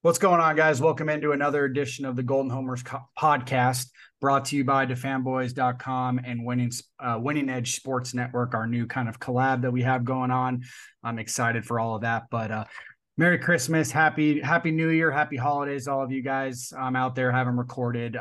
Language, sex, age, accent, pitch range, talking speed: English, male, 20-39, American, 115-130 Hz, 200 wpm